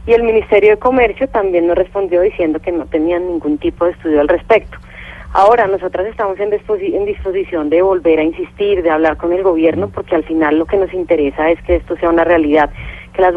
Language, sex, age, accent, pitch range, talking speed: Spanish, female, 30-49, Colombian, 170-205 Hz, 210 wpm